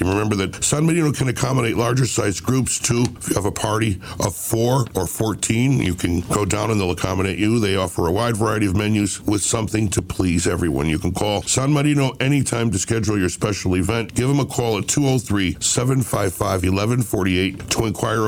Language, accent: English, American